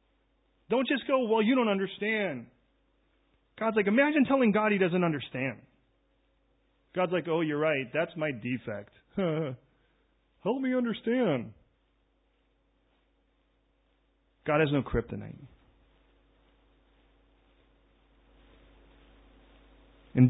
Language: English